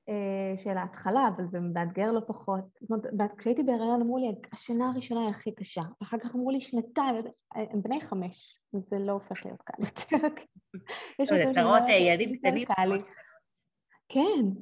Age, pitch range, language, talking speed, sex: 20-39, 185-245 Hz, Hebrew, 150 wpm, female